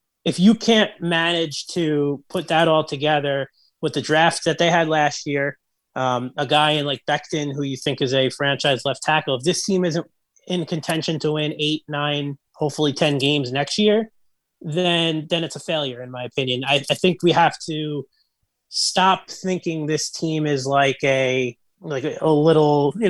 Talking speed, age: 185 wpm, 30-49